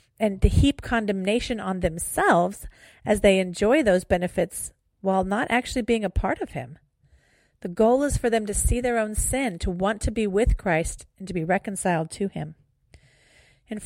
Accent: American